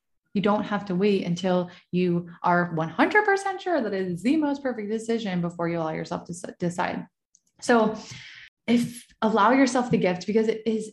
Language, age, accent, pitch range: English, 20-39, American, 175-225 Hz